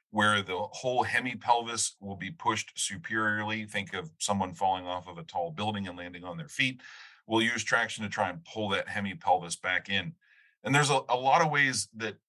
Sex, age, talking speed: male, 30-49, 200 wpm